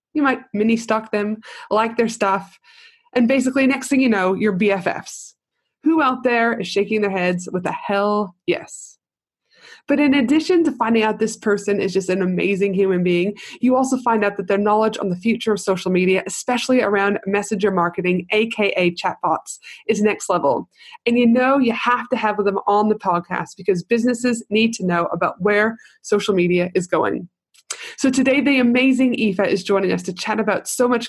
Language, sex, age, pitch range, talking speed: English, female, 20-39, 190-245 Hz, 185 wpm